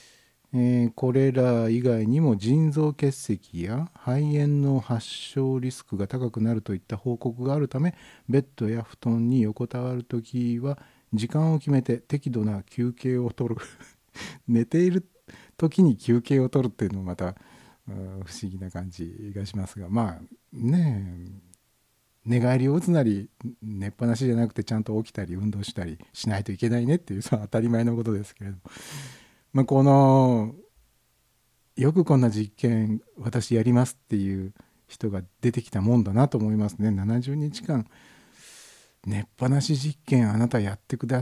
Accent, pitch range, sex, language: native, 105-135 Hz, male, Japanese